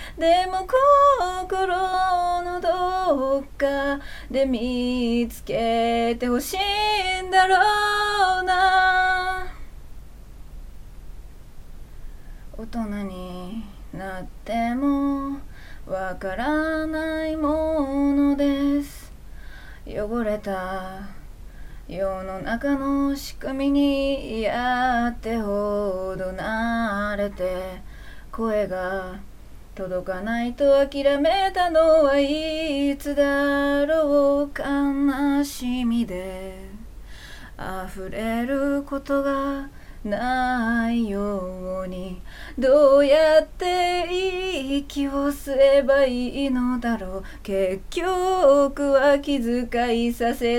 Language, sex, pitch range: Japanese, female, 220-315 Hz